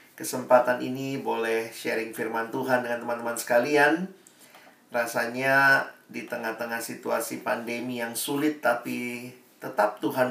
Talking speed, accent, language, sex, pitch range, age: 110 wpm, native, Indonesian, male, 115-135 Hz, 40-59